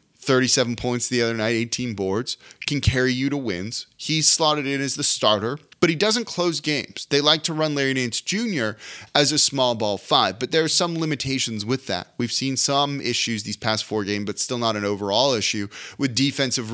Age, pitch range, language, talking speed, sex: 30-49, 110-140 Hz, English, 210 wpm, male